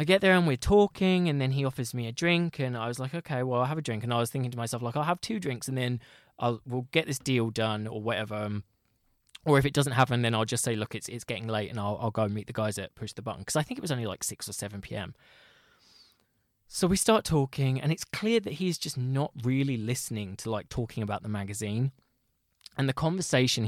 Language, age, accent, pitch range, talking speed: English, 20-39, British, 110-140 Hz, 265 wpm